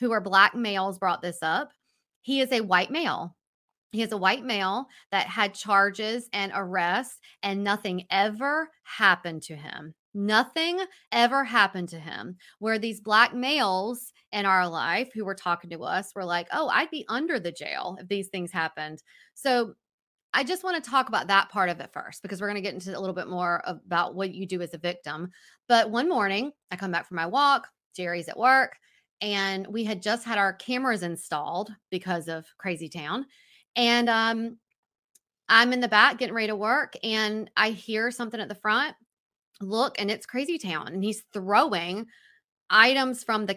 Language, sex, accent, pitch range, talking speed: English, female, American, 185-240 Hz, 190 wpm